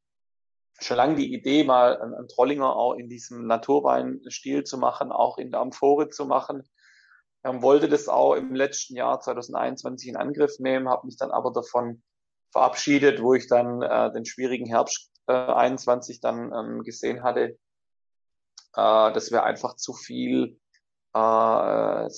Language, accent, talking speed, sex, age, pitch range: English, German, 155 wpm, male, 30-49, 115-135 Hz